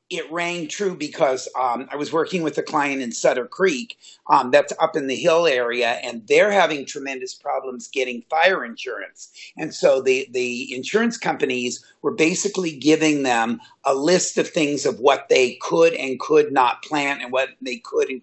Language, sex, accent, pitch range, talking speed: English, male, American, 135-185 Hz, 185 wpm